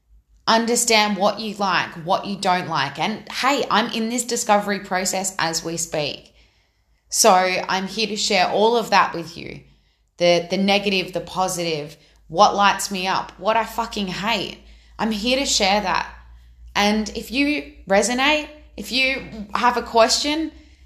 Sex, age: female, 20-39